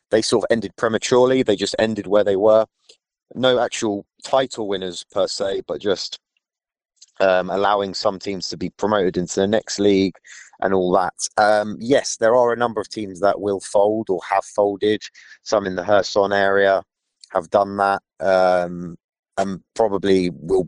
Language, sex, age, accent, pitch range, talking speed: English, male, 30-49, British, 90-105 Hz, 170 wpm